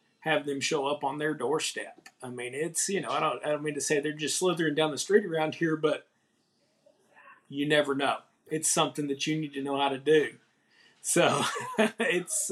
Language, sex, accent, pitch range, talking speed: English, male, American, 140-175 Hz, 205 wpm